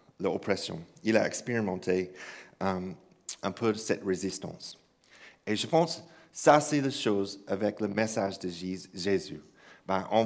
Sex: male